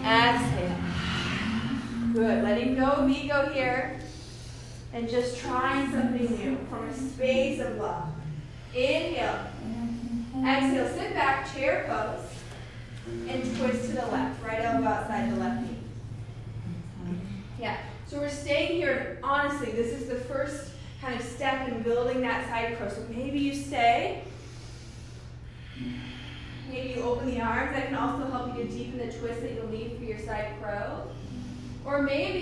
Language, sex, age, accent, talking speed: English, female, 20-39, American, 150 wpm